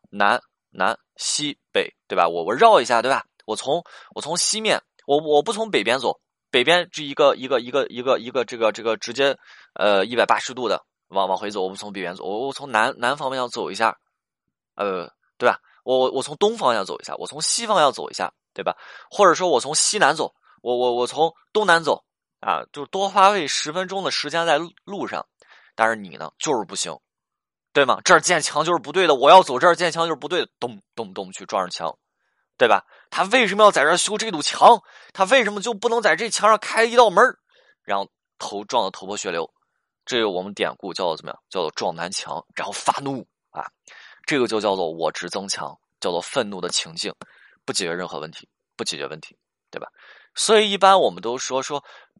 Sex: male